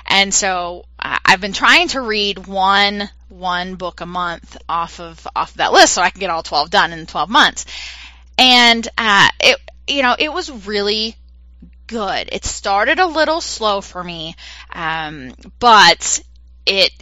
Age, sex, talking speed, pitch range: 20-39, female, 160 wpm, 170-205 Hz